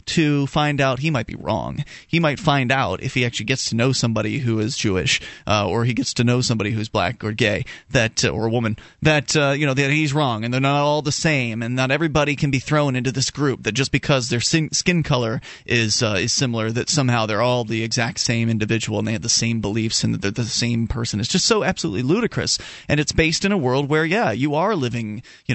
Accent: American